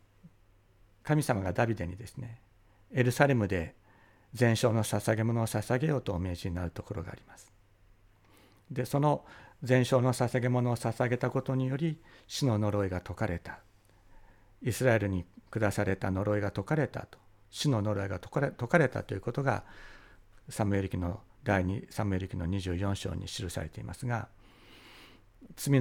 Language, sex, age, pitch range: Japanese, male, 60-79, 100-120 Hz